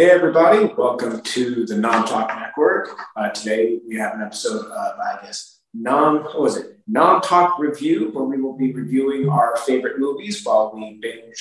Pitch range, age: 115-175 Hz, 30-49